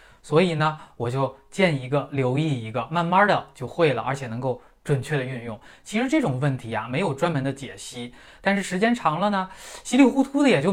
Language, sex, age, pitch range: Chinese, male, 20-39, 125-180 Hz